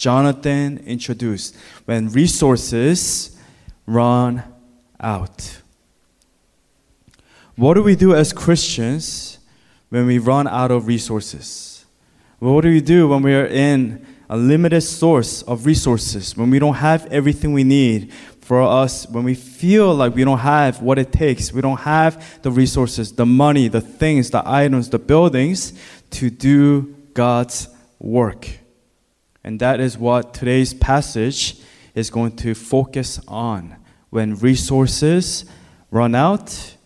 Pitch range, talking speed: 115-150 Hz, 135 wpm